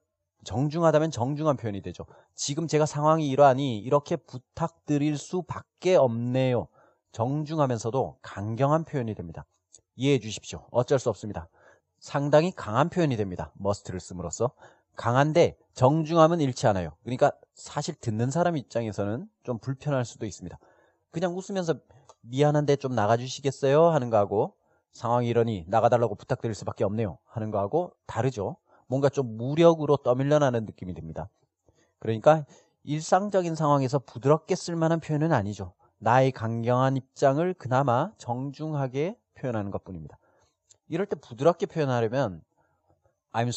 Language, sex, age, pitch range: Korean, male, 30-49, 115-155 Hz